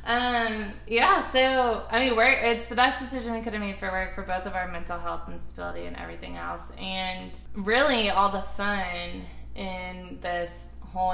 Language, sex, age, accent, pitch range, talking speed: English, female, 20-39, American, 175-205 Hz, 190 wpm